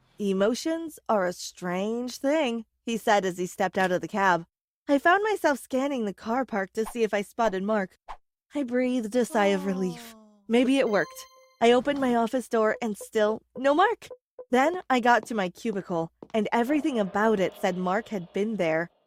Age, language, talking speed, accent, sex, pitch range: 20-39, English, 190 wpm, American, female, 205-290 Hz